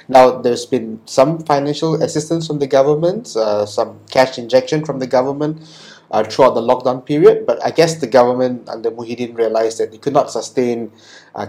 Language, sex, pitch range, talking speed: English, male, 110-145 Hz, 185 wpm